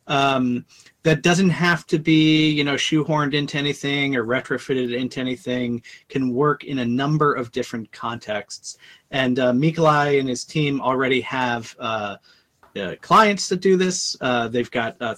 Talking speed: 160 wpm